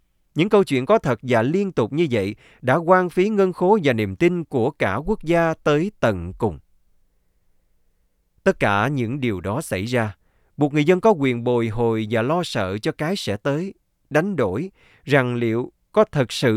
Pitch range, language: 110-175 Hz, Vietnamese